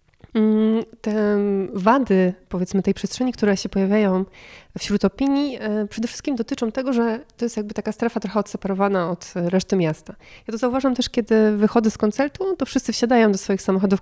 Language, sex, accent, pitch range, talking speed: Polish, female, native, 190-230 Hz, 165 wpm